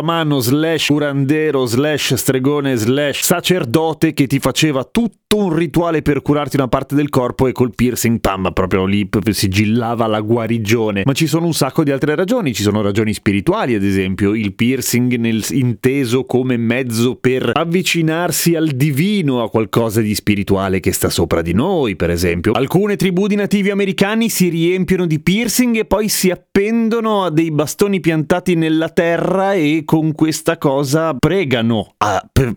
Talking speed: 160 wpm